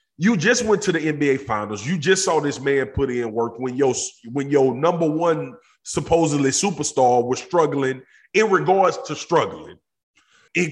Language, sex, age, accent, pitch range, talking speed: English, male, 30-49, American, 130-180 Hz, 170 wpm